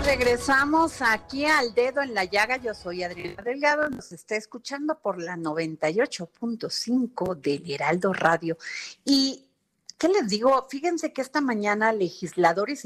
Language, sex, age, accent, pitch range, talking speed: Spanish, female, 40-59, Mexican, 175-250 Hz, 140 wpm